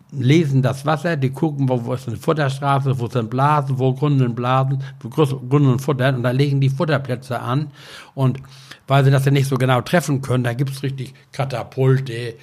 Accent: German